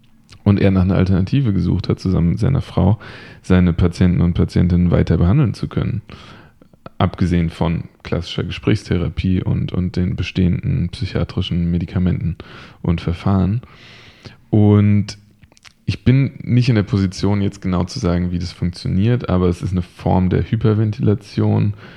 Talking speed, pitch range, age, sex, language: 140 wpm, 95-110 Hz, 20-39, male, German